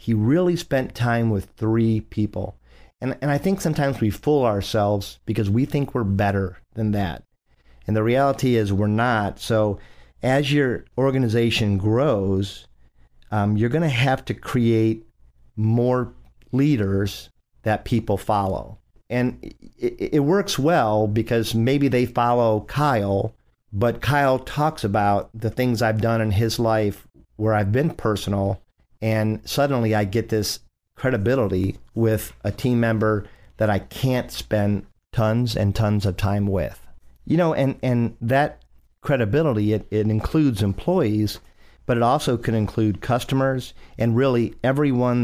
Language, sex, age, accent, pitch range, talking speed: English, male, 50-69, American, 100-120 Hz, 145 wpm